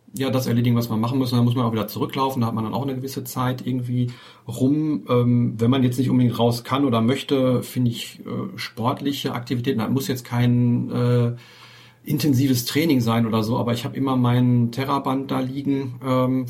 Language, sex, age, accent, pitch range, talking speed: German, male, 40-59, German, 115-125 Hz, 210 wpm